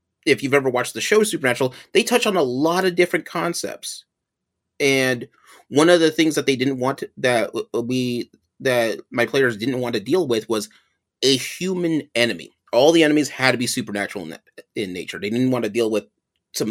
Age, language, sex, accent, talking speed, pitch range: 30-49, English, male, American, 195 wpm, 115-145 Hz